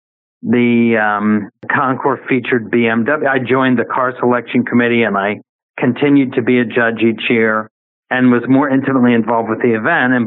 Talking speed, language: 170 wpm, English